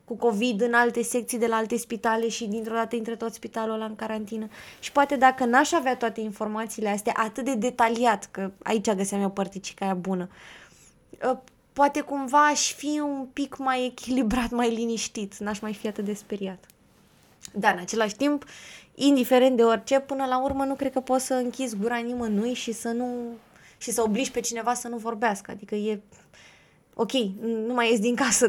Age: 20-39